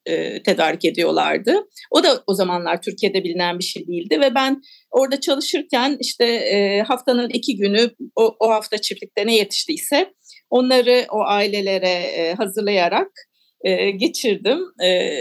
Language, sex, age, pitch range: Turkish, female, 50-69, 210-310 Hz